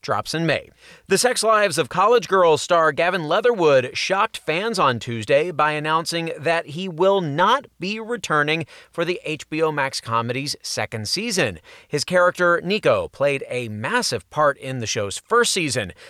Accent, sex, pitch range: American, male, 125-175 Hz